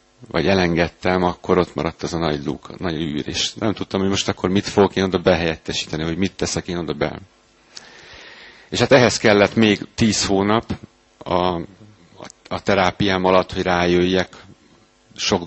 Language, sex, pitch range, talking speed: Hungarian, male, 90-100 Hz, 165 wpm